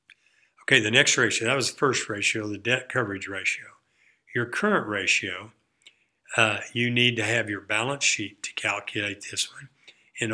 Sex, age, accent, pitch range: male, 60-79, American, 105-120 Hz